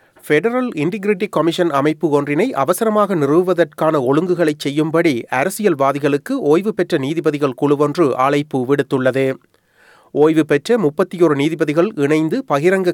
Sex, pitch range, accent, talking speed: male, 145-180 Hz, native, 100 wpm